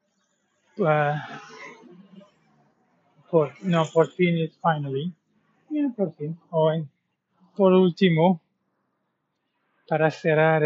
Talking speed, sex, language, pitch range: 80 wpm, male, English, 155-195 Hz